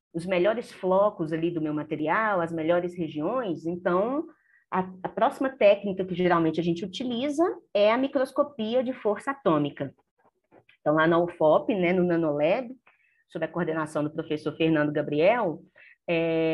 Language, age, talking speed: Portuguese, 30-49, 150 wpm